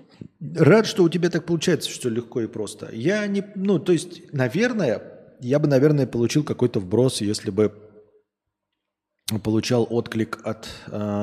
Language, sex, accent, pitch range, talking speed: Russian, male, native, 110-155 Hz, 135 wpm